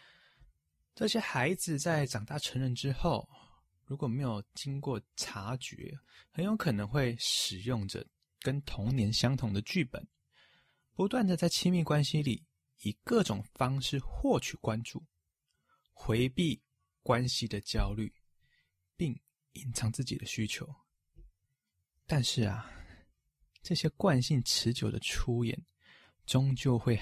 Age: 20-39